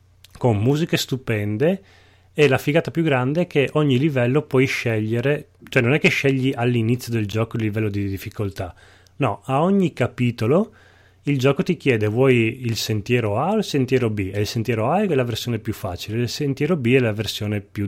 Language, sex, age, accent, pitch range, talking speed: Italian, male, 20-39, native, 100-130 Hz, 195 wpm